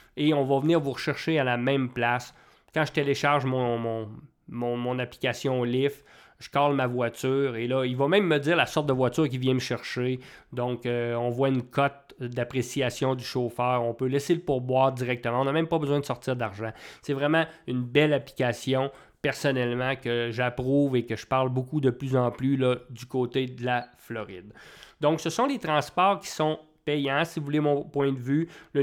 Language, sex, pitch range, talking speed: English, male, 125-145 Hz, 205 wpm